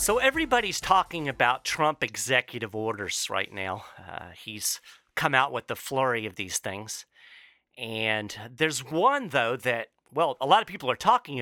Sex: male